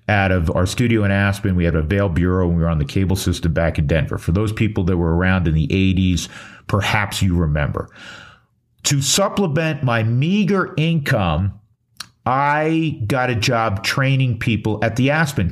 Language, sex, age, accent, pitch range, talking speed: English, male, 50-69, American, 90-115 Hz, 180 wpm